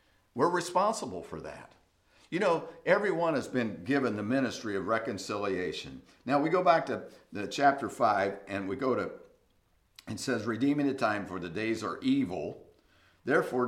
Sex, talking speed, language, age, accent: male, 160 wpm, English, 50-69, American